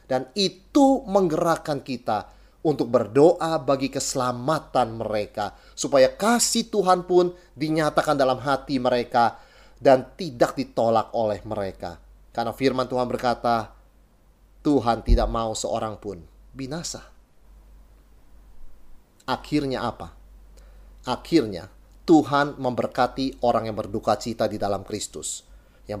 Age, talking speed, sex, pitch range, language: 30-49, 105 wpm, male, 110-155 Hz, Indonesian